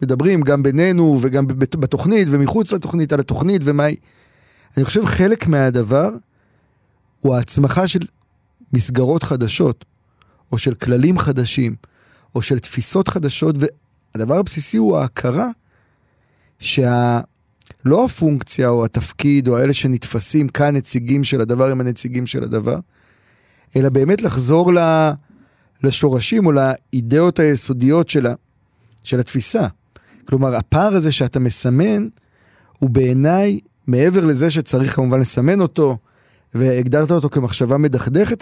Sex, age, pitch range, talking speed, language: male, 30-49, 125-165 Hz, 115 wpm, Hebrew